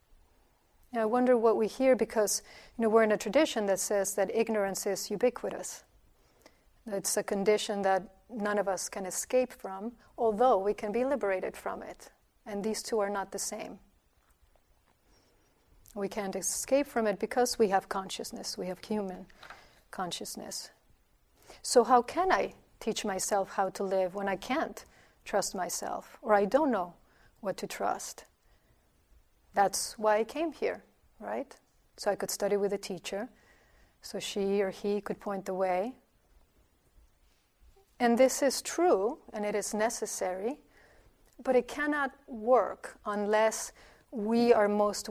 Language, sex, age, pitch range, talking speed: English, female, 40-59, 195-230 Hz, 150 wpm